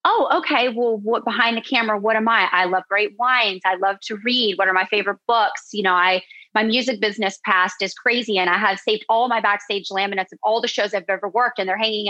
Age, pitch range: 30-49, 195-245 Hz